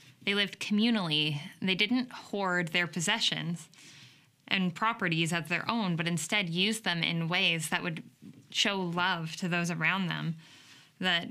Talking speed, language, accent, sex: 150 wpm, English, American, female